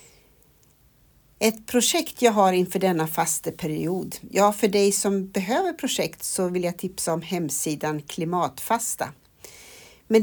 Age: 60-79